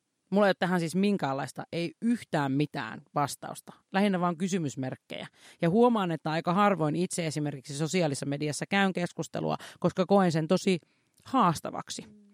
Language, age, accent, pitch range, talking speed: Finnish, 30-49, native, 155-195 Hz, 140 wpm